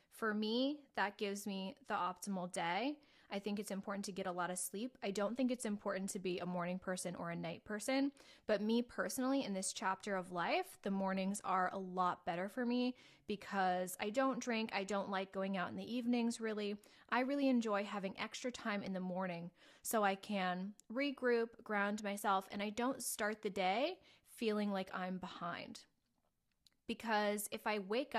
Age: 20-39